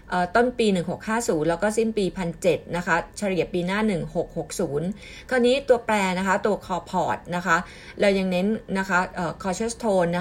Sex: female